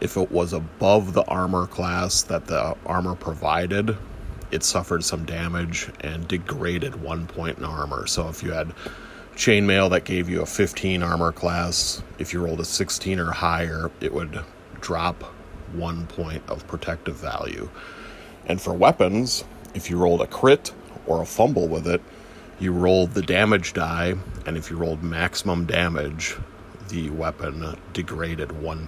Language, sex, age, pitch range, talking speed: English, male, 30-49, 80-95 Hz, 160 wpm